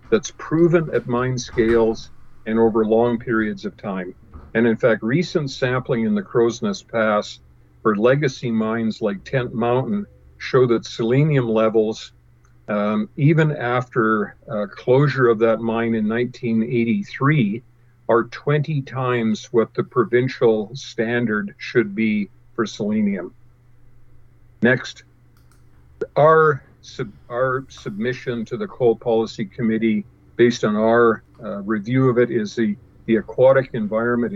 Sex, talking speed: male, 125 wpm